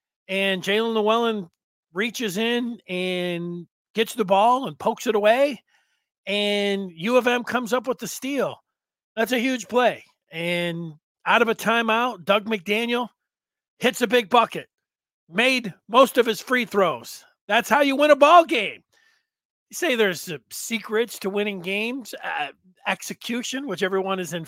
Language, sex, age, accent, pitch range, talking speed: English, male, 40-59, American, 180-235 Hz, 155 wpm